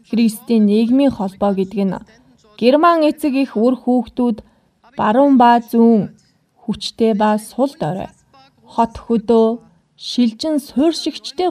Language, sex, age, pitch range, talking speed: English, female, 20-39, 220-285 Hz, 100 wpm